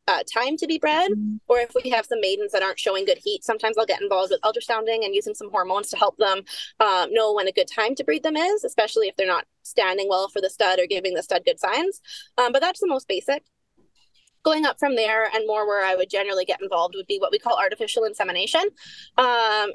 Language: English